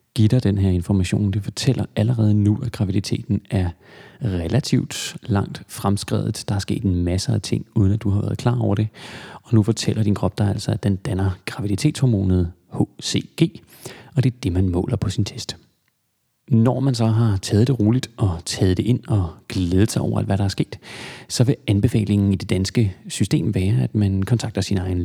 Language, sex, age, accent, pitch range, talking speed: Danish, male, 30-49, native, 100-125 Hz, 195 wpm